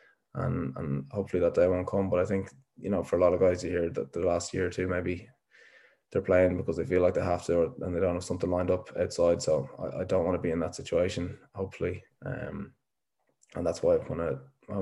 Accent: Irish